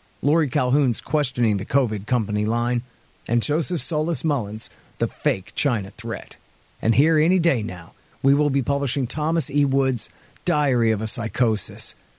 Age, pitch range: 40-59, 110-135 Hz